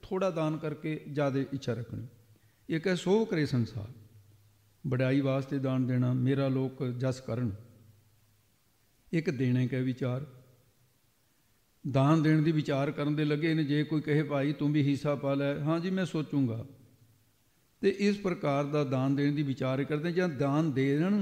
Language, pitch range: English, 125-160 Hz